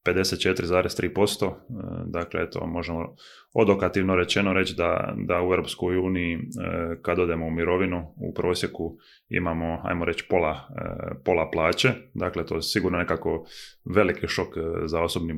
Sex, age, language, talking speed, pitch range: male, 20-39, Croatian, 125 wpm, 80-90 Hz